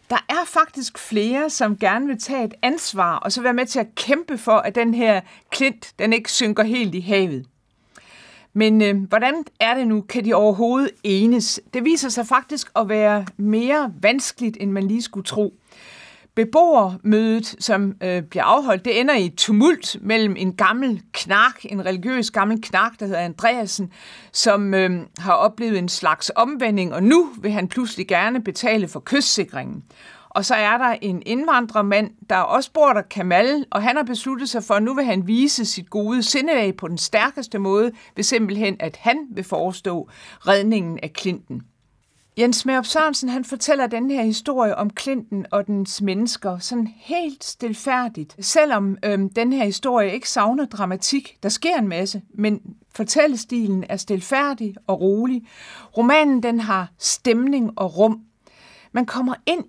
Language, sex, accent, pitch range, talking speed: Danish, female, native, 195-250 Hz, 165 wpm